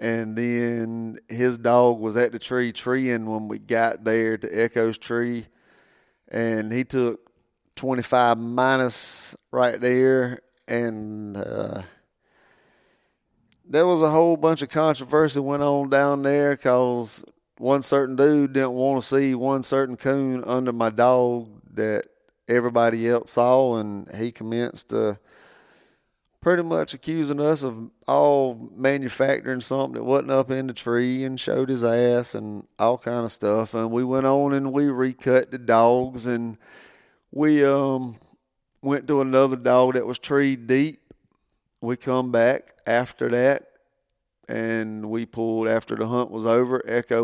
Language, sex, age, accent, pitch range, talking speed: English, male, 30-49, American, 115-135 Hz, 145 wpm